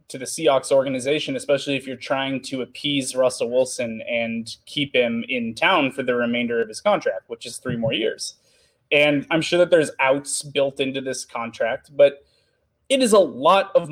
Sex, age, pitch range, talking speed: male, 20-39, 140-225 Hz, 190 wpm